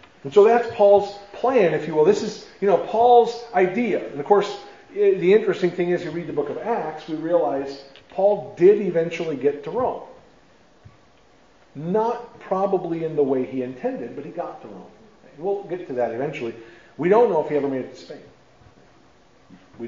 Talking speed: 190 wpm